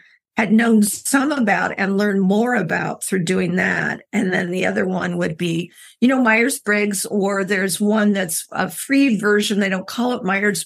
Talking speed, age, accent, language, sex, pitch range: 190 wpm, 50-69, American, English, female, 205-255 Hz